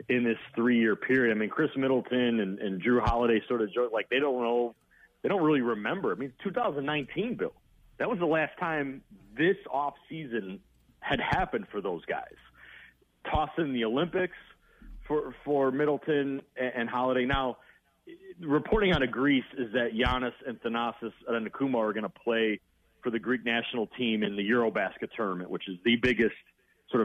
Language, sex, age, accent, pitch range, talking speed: English, male, 40-59, American, 115-150 Hz, 175 wpm